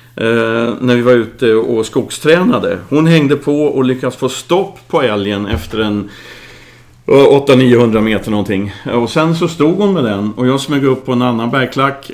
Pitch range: 110-135 Hz